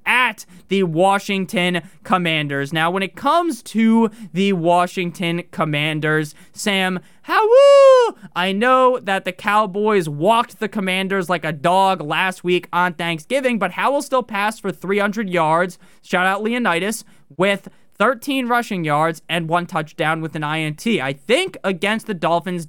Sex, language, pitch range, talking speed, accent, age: male, English, 160-215 Hz, 145 wpm, American, 20-39